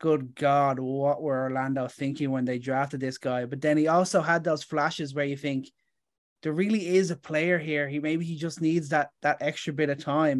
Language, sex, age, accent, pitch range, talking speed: English, male, 20-39, Irish, 140-160 Hz, 220 wpm